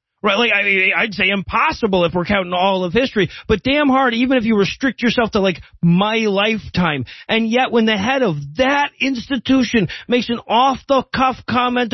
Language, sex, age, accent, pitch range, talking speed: English, male, 40-59, American, 185-225 Hz, 175 wpm